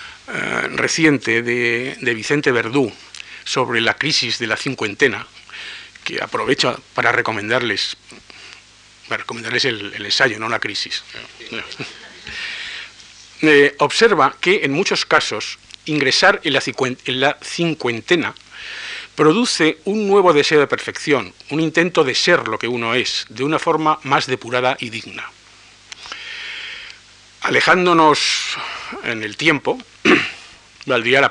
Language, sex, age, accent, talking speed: Spanish, male, 50-69, Spanish, 115 wpm